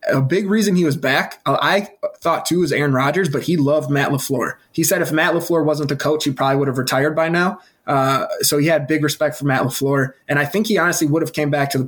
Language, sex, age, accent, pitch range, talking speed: English, male, 20-39, American, 135-155 Hz, 265 wpm